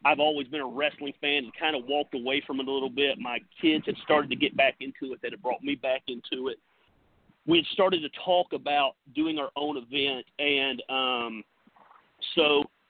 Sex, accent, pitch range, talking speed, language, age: male, American, 130-160 Hz, 210 wpm, English, 40-59